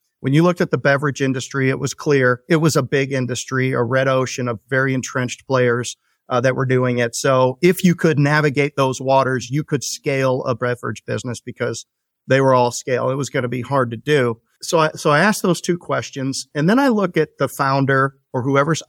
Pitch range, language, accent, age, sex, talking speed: 125-150 Hz, English, American, 40-59, male, 220 wpm